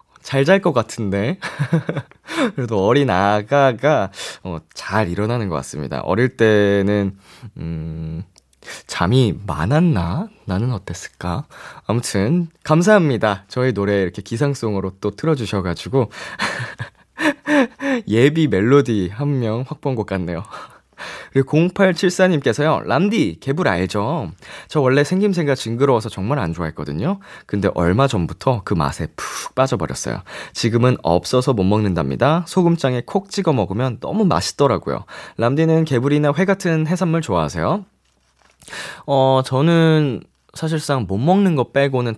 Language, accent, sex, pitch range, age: Korean, native, male, 95-150 Hz, 20-39